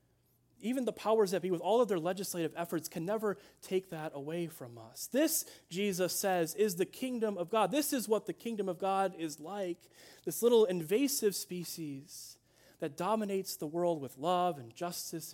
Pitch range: 140-195 Hz